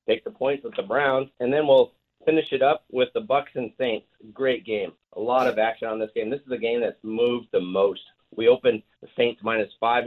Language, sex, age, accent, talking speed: English, male, 40-59, American, 240 wpm